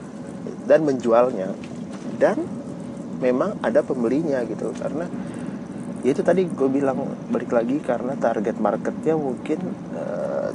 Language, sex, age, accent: Indonesian, male, 30-49, native